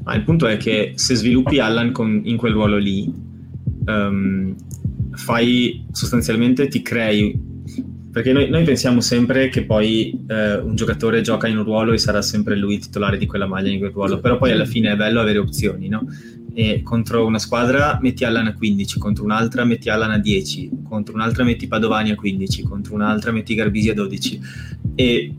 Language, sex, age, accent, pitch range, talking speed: Italian, male, 20-39, native, 105-120 Hz, 185 wpm